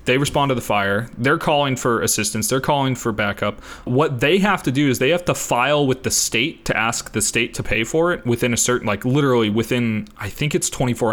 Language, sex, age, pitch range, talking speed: English, male, 20-39, 110-135 Hz, 235 wpm